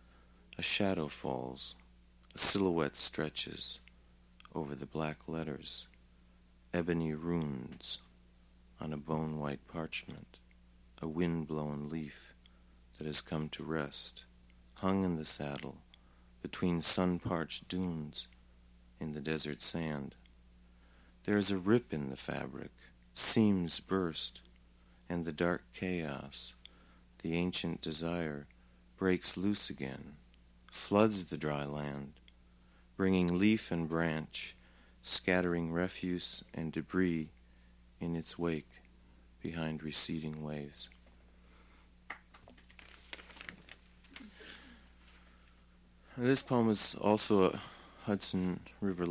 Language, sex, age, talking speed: English, male, 50-69, 95 wpm